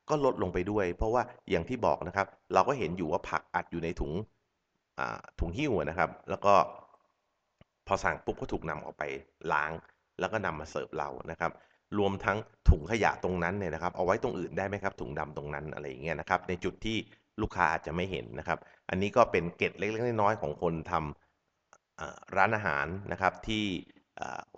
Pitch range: 80-95 Hz